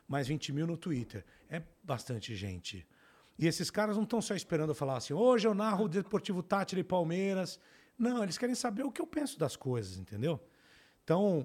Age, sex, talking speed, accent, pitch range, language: 40-59, male, 205 wpm, Brazilian, 135-185 Hz, Portuguese